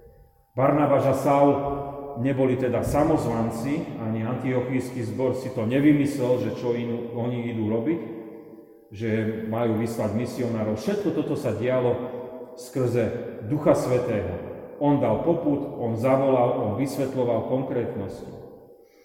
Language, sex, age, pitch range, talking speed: Slovak, male, 40-59, 120-150 Hz, 115 wpm